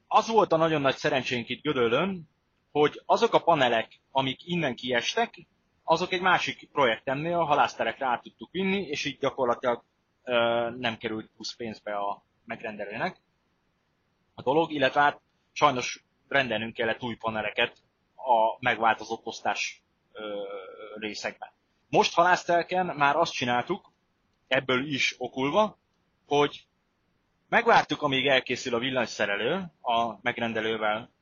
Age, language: 30-49, Hungarian